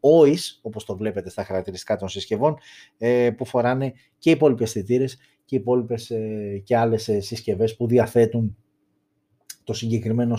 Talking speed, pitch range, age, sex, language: 120 wpm, 105-145 Hz, 30-49, male, Greek